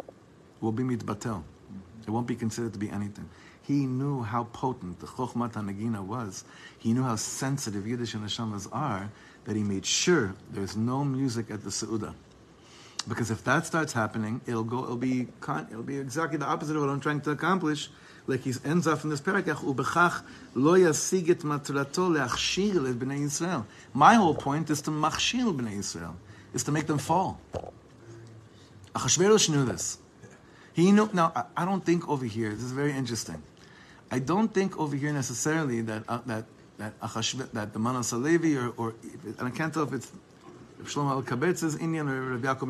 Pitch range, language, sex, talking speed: 110-145 Hz, English, male, 175 wpm